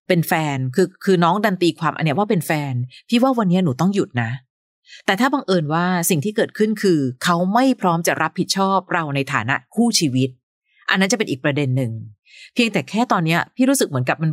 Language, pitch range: Thai, 155-215 Hz